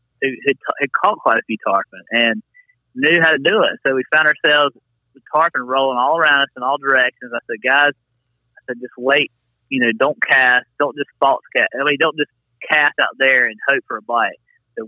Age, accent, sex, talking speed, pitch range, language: 30-49, American, male, 220 wpm, 115-140 Hz, English